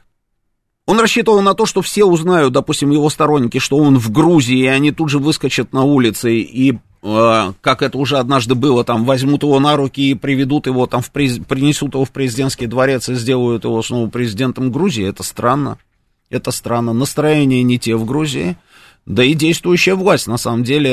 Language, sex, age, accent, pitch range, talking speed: Russian, male, 30-49, native, 120-155 Hz, 190 wpm